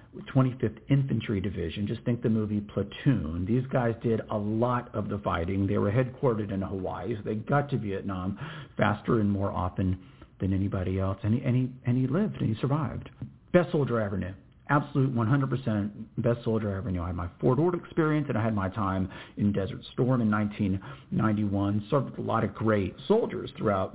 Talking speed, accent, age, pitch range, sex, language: 195 wpm, American, 50-69, 100-135 Hz, male, English